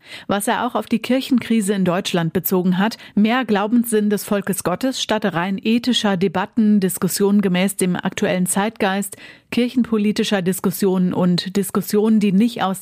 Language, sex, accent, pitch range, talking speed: German, female, German, 180-215 Hz, 145 wpm